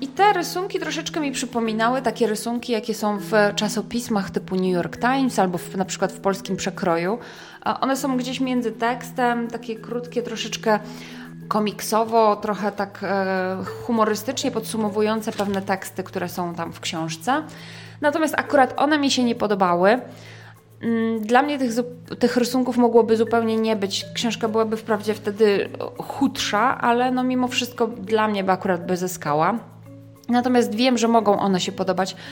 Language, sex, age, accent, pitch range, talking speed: Polish, female, 20-39, native, 190-240 Hz, 150 wpm